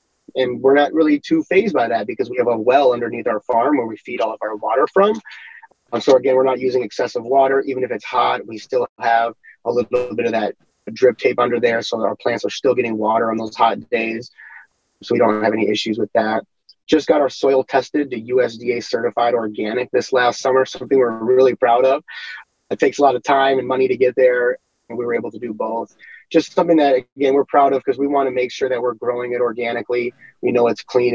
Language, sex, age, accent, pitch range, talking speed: English, male, 30-49, American, 115-140 Hz, 235 wpm